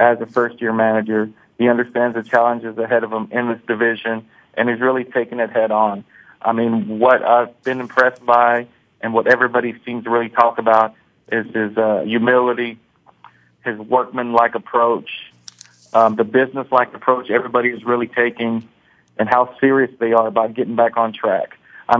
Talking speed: 165 wpm